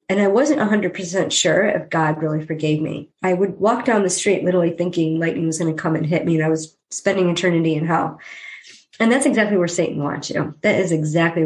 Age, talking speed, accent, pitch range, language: 40-59, 225 wpm, American, 160-195 Hz, English